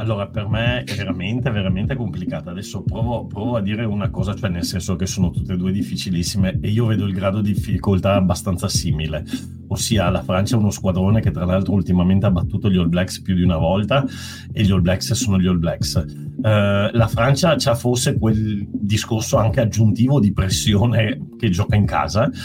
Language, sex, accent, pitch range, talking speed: Italian, male, native, 95-120 Hz, 200 wpm